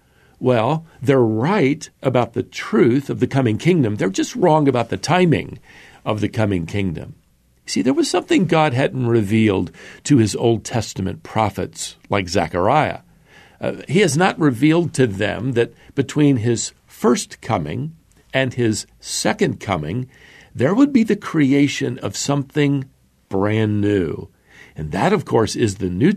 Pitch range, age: 100-145 Hz, 50-69